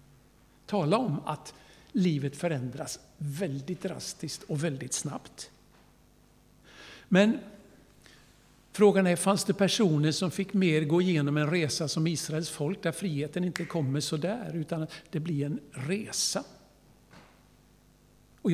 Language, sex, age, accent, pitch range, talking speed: Swedish, male, 60-79, native, 150-195 Hz, 125 wpm